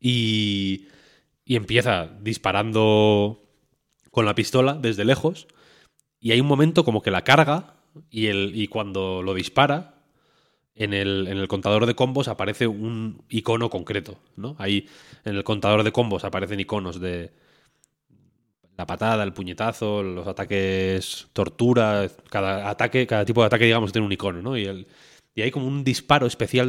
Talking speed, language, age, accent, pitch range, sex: 155 wpm, Spanish, 20-39, Spanish, 95-120 Hz, male